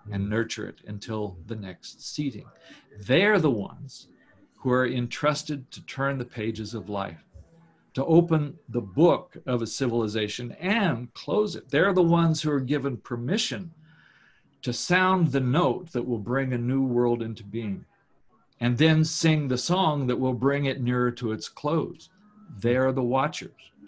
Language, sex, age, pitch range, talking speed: English, male, 50-69, 120-160 Hz, 160 wpm